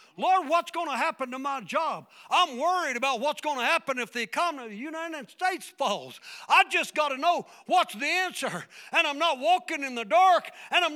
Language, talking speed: English, 220 wpm